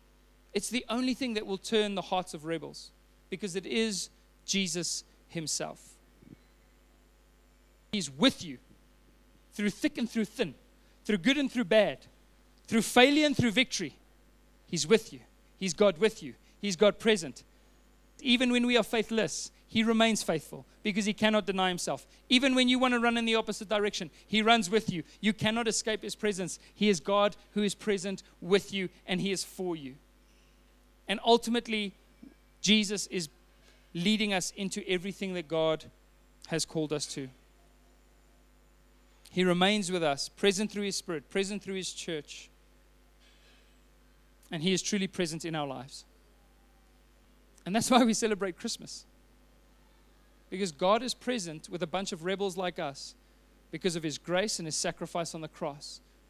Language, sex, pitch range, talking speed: English, male, 170-220 Hz, 160 wpm